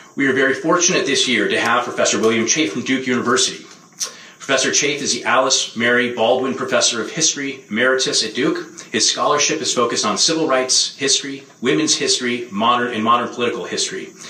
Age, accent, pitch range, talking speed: 30-49, American, 120-150 Hz, 175 wpm